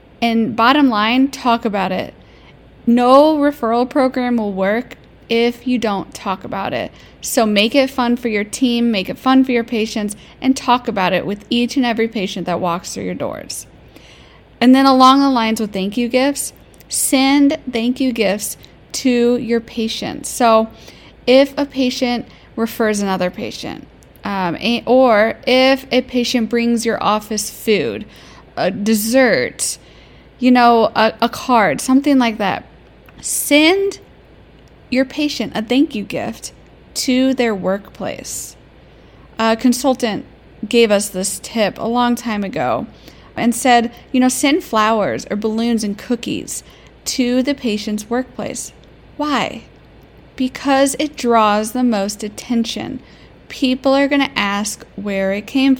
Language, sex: English, female